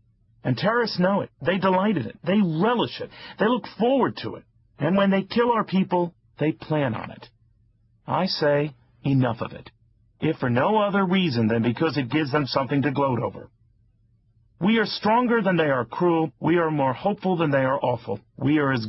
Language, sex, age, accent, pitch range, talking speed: English, male, 40-59, American, 115-170 Hz, 200 wpm